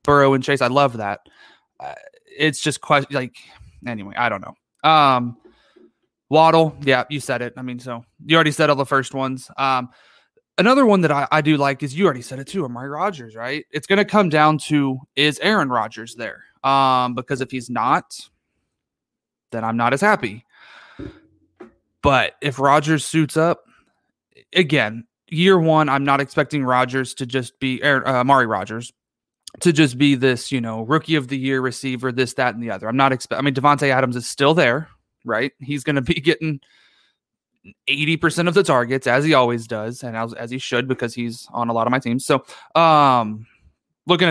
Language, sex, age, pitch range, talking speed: English, male, 20-39, 125-155 Hz, 190 wpm